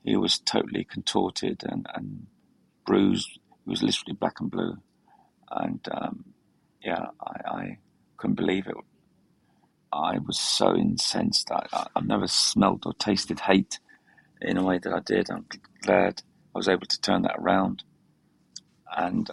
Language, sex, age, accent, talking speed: English, male, 40-59, British, 150 wpm